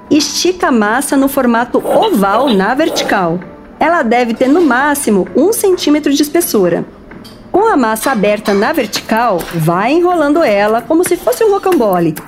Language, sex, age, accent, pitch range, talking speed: English, female, 50-69, Brazilian, 220-330 Hz, 150 wpm